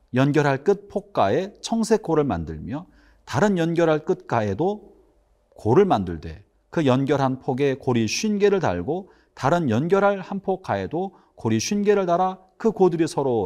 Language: Korean